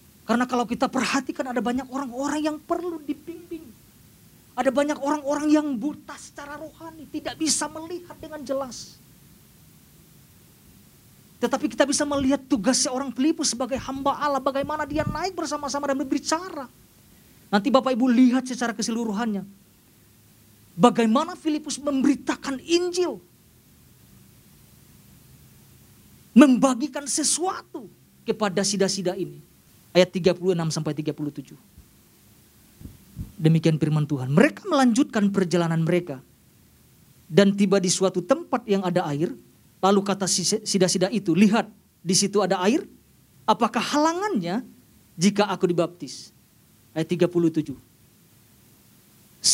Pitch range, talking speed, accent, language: 185-285 Hz, 105 wpm, native, Indonesian